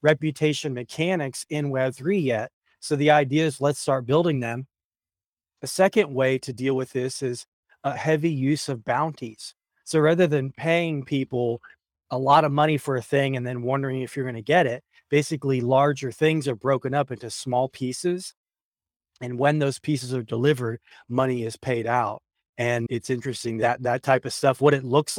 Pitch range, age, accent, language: 120-150 Hz, 30-49, American, English